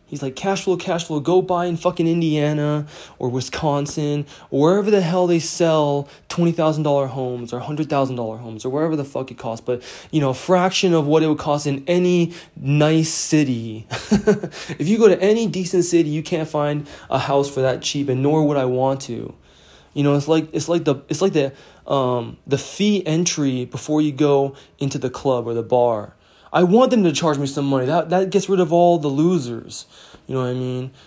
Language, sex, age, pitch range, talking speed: English, male, 20-39, 130-165 Hz, 210 wpm